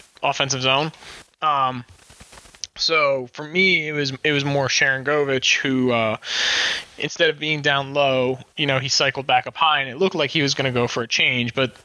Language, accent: English, American